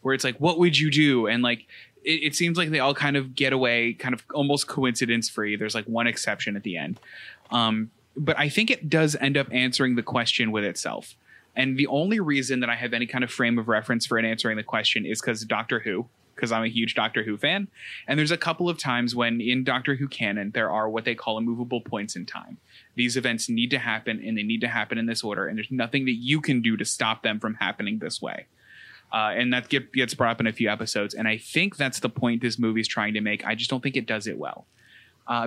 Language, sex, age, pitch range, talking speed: English, male, 20-39, 115-135 Hz, 255 wpm